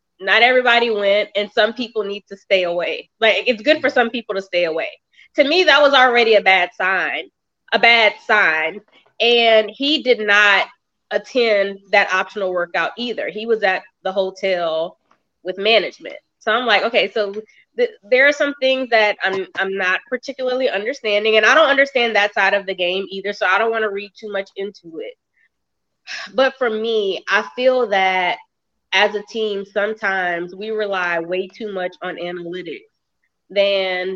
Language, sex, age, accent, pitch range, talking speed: English, female, 20-39, American, 195-240 Hz, 175 wpm